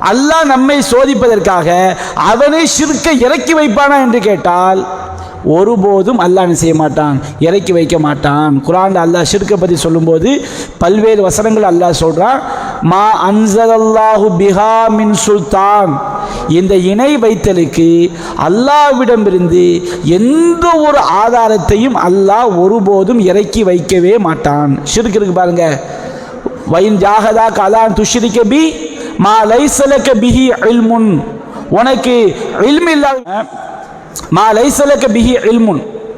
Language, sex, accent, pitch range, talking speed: English, male, Indian, 175-235 Hz, 105 wpm